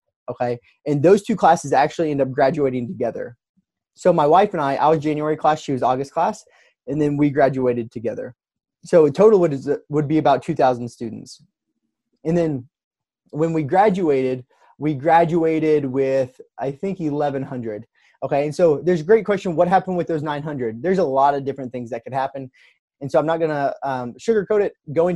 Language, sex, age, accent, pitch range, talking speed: English, male, 20-39, American, 135-160 Hz, 185 wpm